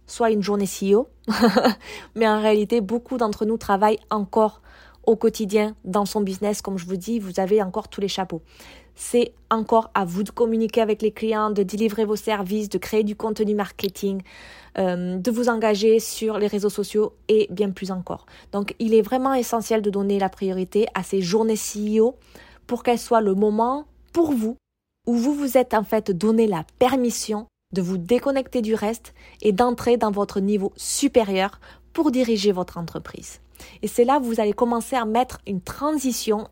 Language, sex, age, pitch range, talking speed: French, female, 20-39, 195-230 Hz, 185 wpm